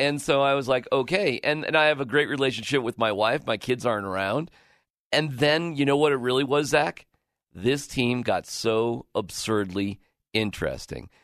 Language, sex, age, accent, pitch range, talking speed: English, male, 40-59, American, 105-140 Hz, 185 wpm